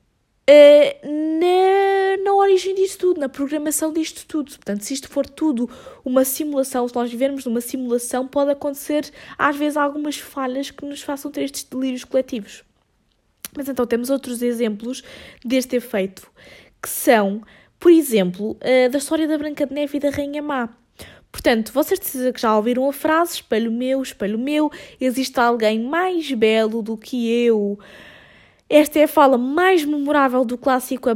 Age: 20-39